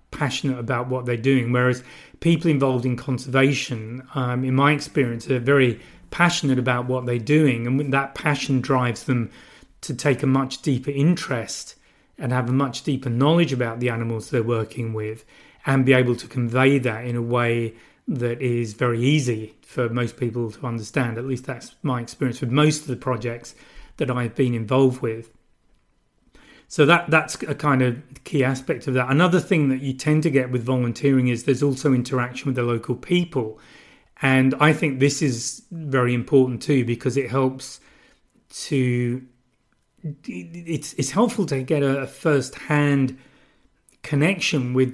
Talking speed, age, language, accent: 170 wpm, 30-49, English, British